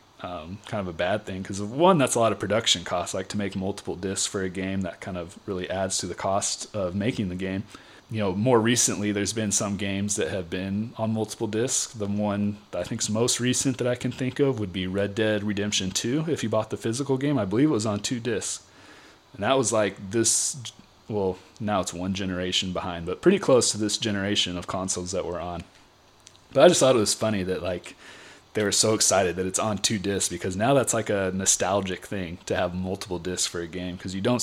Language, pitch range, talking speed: English, 95-115 Hz, 235 wpm